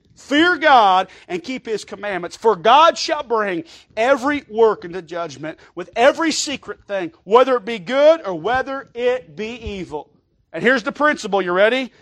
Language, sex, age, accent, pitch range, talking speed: English, male, 40-59, American, 200-275 Hz, 165 wpm